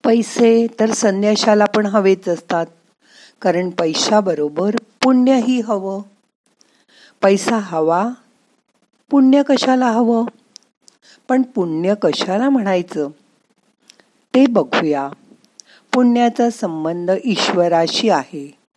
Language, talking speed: Marathi, 85 wpm